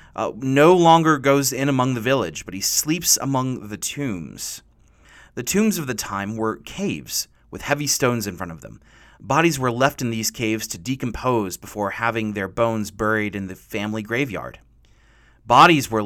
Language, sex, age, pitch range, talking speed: English, male, 30-49, 110-140 Hz, 175 wpm